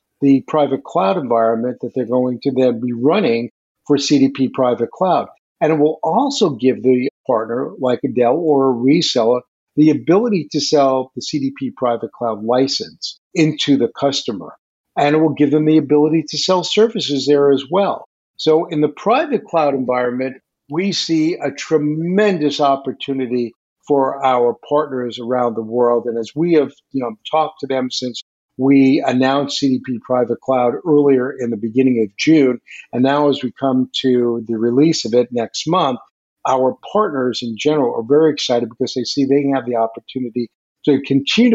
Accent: American